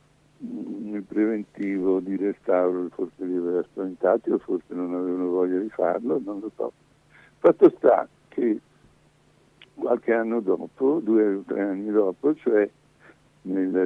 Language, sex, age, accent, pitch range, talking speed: Italian, male, 60-79, native, 95-110 Hz, 135 wpm